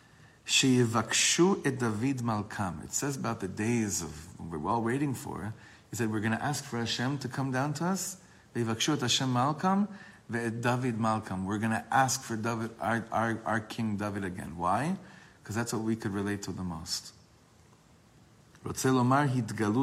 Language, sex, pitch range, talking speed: English, male, 100-130 Hz, 140 wpm